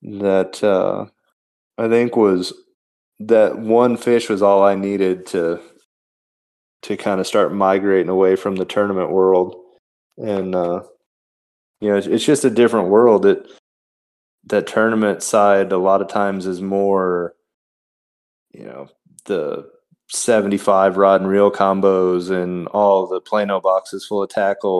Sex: male